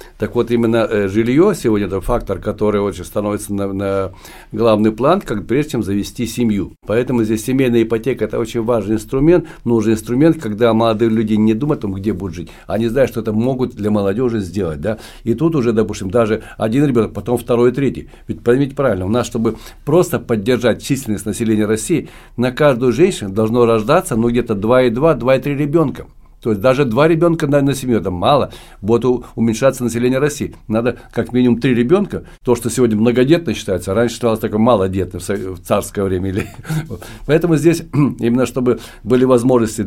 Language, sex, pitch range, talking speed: Russian, male, 110-130 Hz, 175 wpm